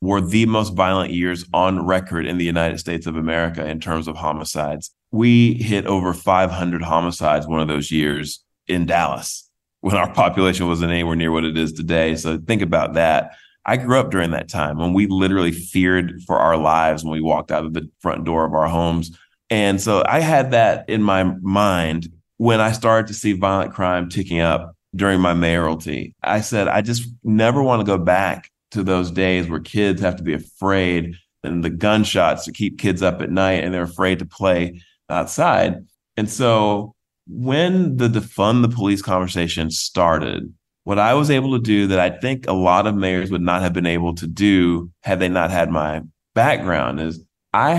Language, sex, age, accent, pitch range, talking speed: English, male, 30-49, American, 85-105 Hz, 195 wpm